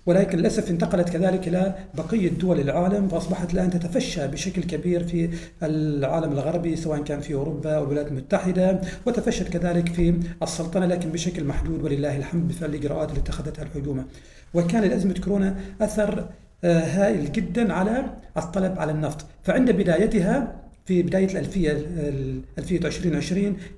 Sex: male